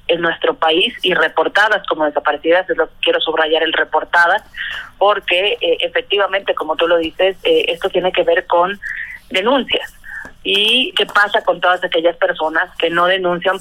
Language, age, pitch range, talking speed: Spanish, 30-49, 160-195 Hz, 170 wpm